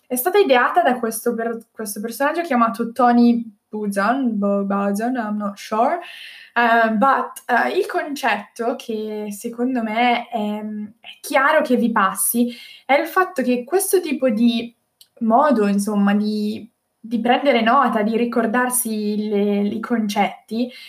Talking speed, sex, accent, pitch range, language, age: 130 wpm, female, native, 210-260 Hz, Italian, 10-29